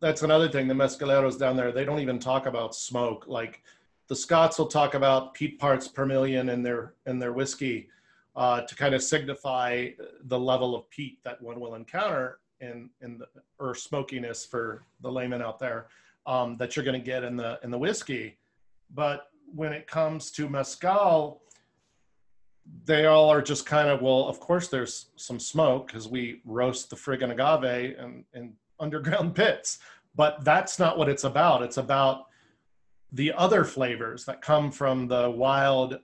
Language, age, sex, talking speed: English, 40-59, male, 175 wpm